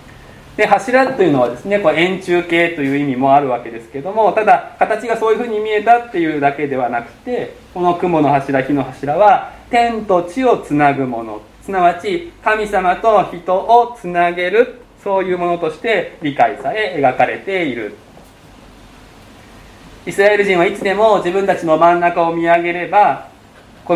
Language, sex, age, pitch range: Japanese, male, 20-39, 140-200 Hz